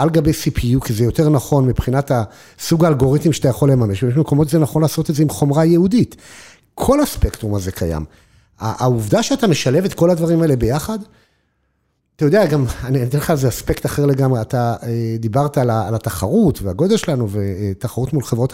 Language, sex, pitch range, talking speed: Hebrew, male, 115-155 Hz, 170 wpm